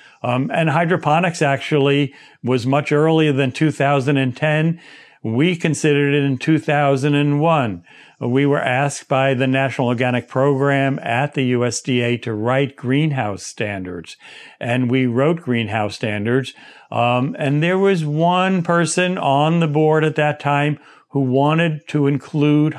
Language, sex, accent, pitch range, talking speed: English, male, American, 120-150 Hz, 130 wpm